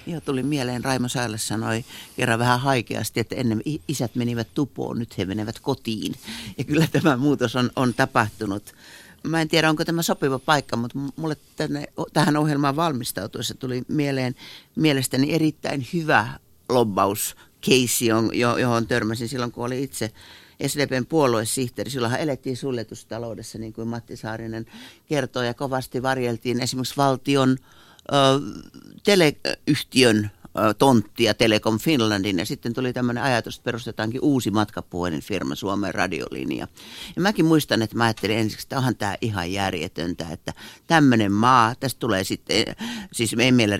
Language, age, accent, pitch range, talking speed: Finnish, 60-79, native, 110-140 Hz, 140 wpm